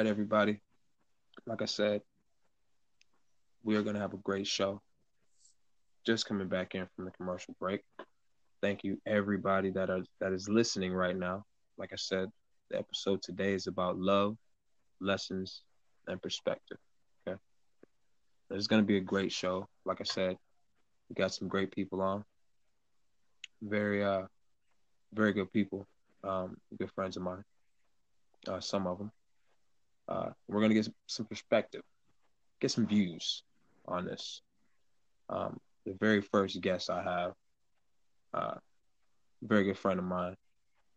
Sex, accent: male, American